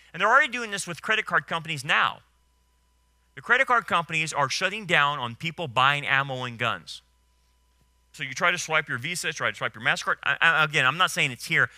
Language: English